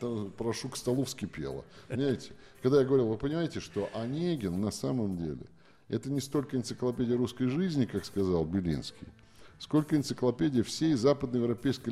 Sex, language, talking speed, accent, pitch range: male, Russian, 140 wpm, native, 105-140 Hz